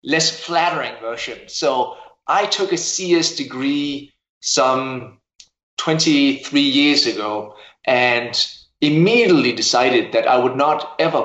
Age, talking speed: 30-49, 110 wpm